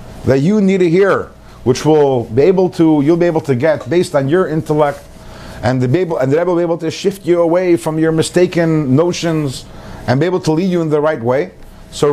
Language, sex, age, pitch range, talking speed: English, male, 50-69, 140-195 Hz, 230 wpm